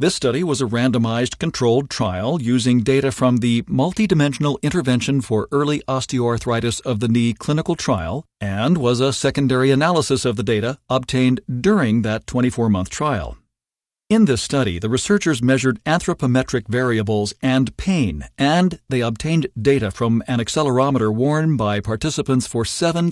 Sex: male